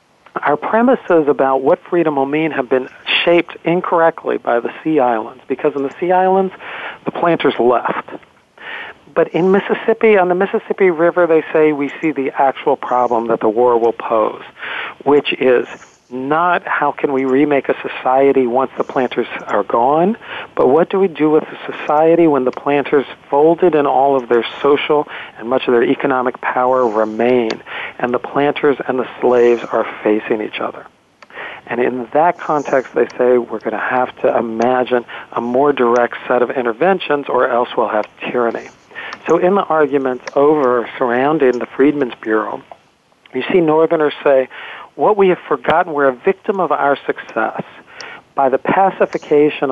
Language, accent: English, American